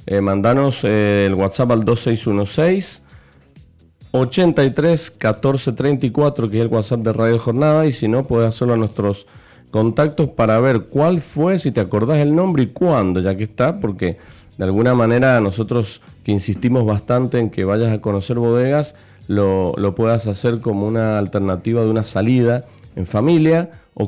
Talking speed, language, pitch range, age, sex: 160 wpm, Spanish, 100-130 Hz, 40-59, male